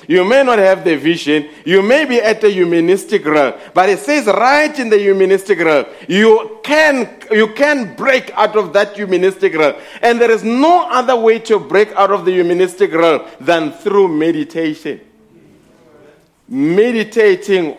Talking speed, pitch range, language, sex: 160 wpm, 175-235 Hz, English, male